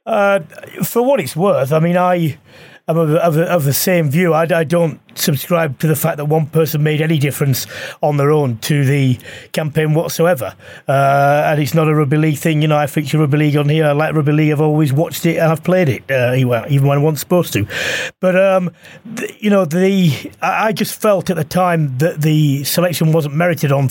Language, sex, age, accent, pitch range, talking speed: English, male, 30-49, British, 150-185 Hz, 225 wpm